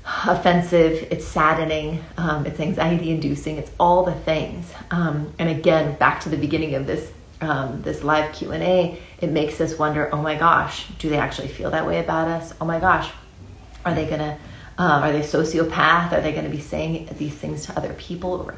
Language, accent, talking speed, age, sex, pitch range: English, American, 195 wpm, 30-49, female, 150-175 Hz